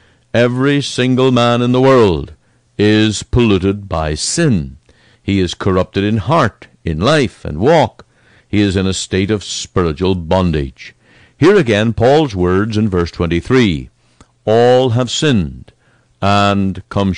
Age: 60-79